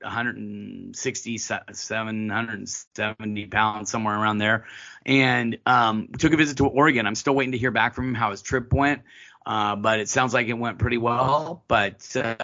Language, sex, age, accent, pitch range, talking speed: English, male, 30-49, American, 105-120 Hz, 170 wpm